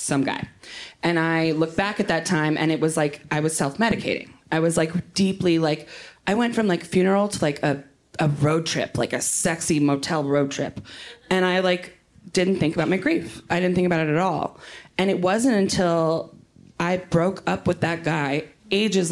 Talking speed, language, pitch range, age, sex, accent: 200 wpm, English, 160-195 Hz, 20-39, female, American